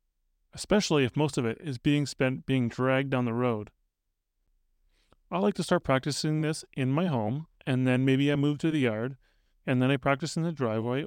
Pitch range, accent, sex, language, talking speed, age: 120-165 Hz, American, male, English, 200 wpm, 30-49